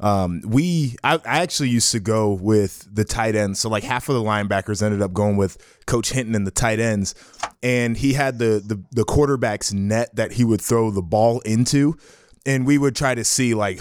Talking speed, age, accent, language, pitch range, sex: 215 wpm, 20-39, American, English, 110-130 Hz, male